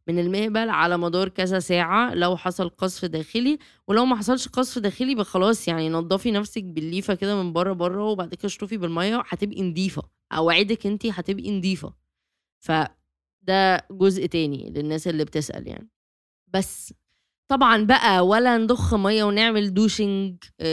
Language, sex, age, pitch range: Arabic, female, 20-39, 180-225 Hz